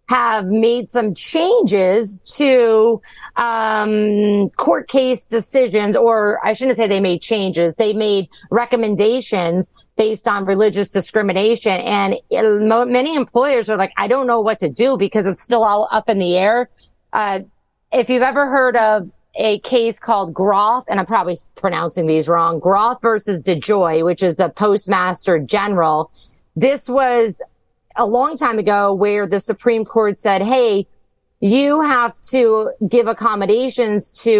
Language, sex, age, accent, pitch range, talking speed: English, female, 40-59, American, 195-230 Hz, 150 wpm